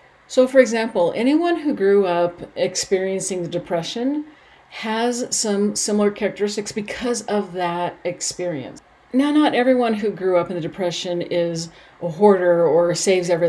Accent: American